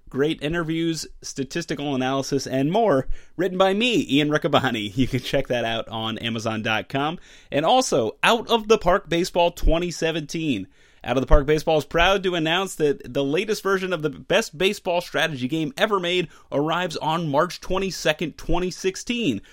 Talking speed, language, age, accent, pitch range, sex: 160 wpm, English, 30-49, American, 140-190 Hz, male